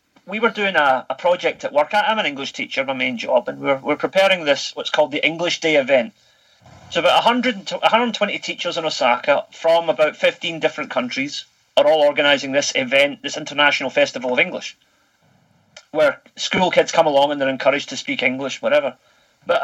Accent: British